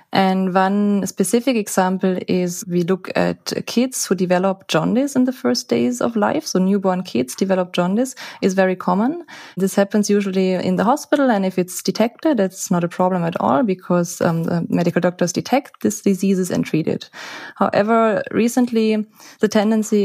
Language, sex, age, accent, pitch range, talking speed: English, female, 20-39, German, 180-225 Hz, 170 wpm